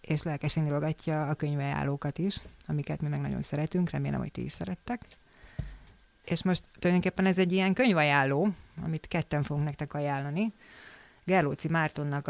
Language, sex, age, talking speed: Hungarian, female, 30-49, 145 wpm